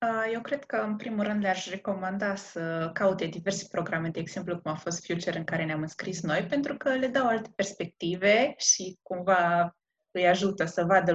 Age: 20-39